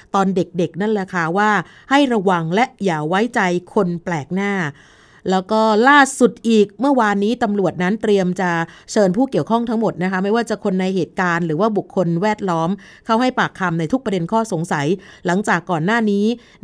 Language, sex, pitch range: Thai, female, 175-215 Hz